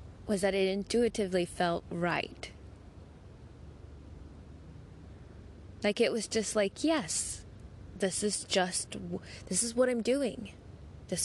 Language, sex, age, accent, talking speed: English, female, 20-39, American, 110 wpm